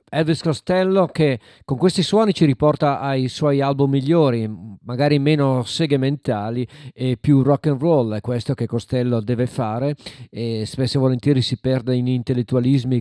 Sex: male